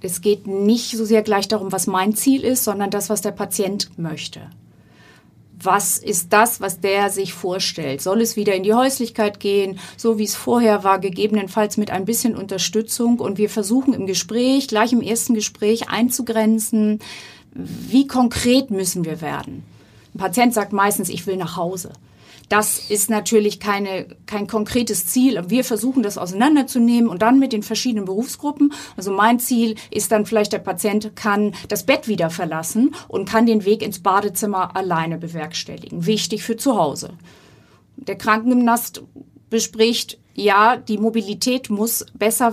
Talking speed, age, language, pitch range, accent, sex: 160 wpm, 30-49, German, 200-230 Hz, German, female